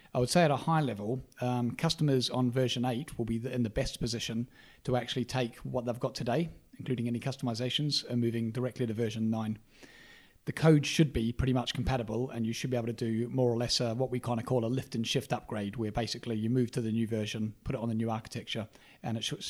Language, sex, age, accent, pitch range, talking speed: English, male, 40-59, British, 115-135 Hz, 245 wpm